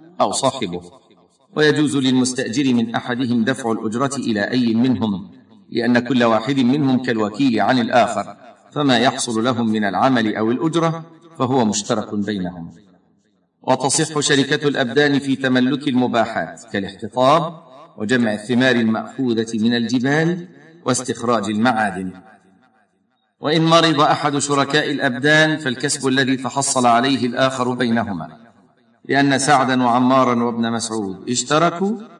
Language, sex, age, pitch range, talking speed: Arabic, male, 50-69, 115-145 Hz, 110 wpm